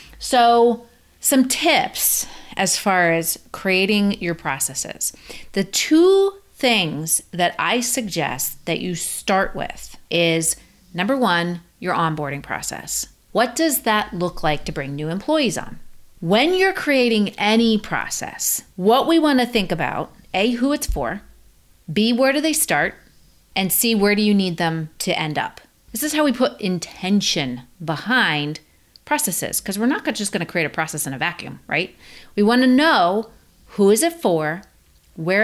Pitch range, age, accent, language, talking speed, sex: 165-235 Hz, 30-49, American, English, 160 wpm, female